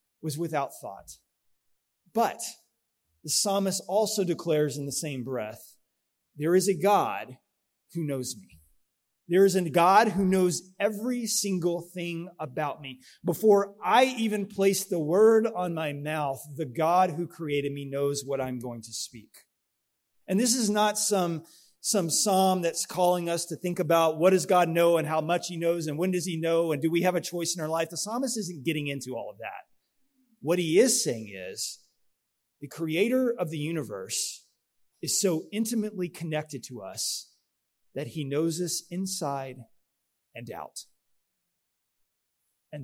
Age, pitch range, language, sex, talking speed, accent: 30-49, 150-195 Hz, English, male, 165 wpm, American